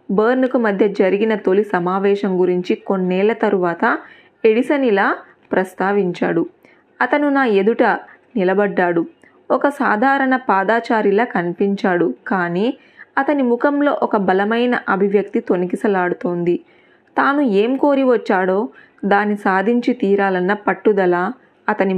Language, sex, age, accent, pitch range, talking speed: Telugu, female, 20-39, native, 190-245 Hz, 95 wpm